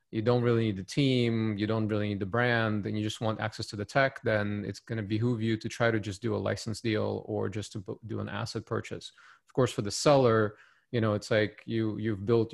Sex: male